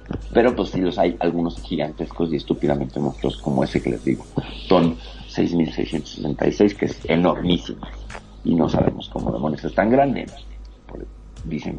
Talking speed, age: 150 wpm, 50-69